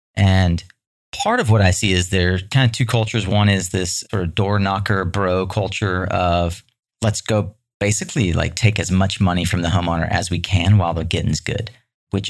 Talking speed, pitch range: 205 wpm, 95-120 Hz